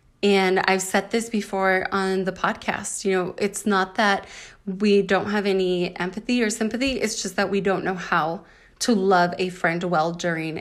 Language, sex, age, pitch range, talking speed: English, female, 20-39, 180-215 Hz, 185 wpm